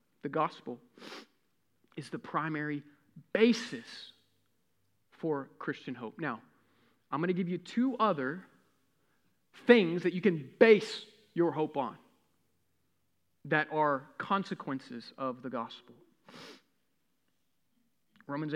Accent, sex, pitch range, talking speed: American, male, 155-225 Hz, 105 wpm